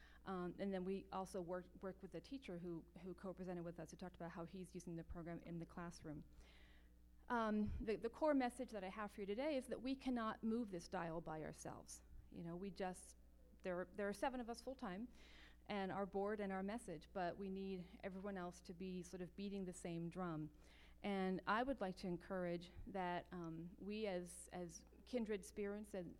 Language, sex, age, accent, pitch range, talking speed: English, female, 40-59, American, 170-205 Hz, 210 wpm